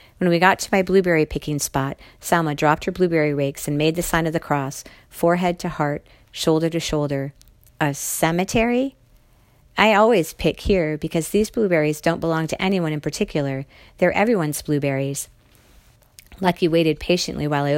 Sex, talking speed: female, 165 wpm